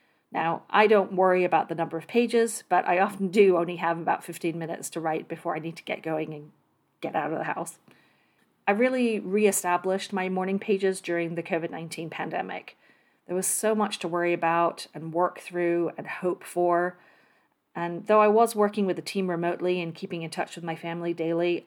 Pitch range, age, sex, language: 170-200 Hz, 40-59, female, English